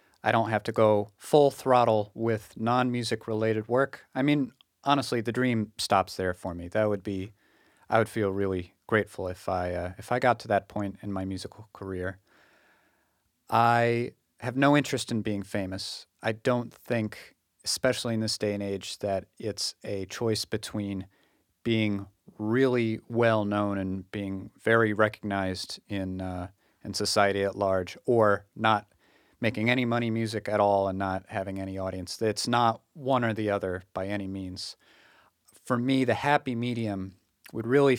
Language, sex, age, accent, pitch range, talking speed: English, male, 30-49, American, 100-120 Hz, 160 wpm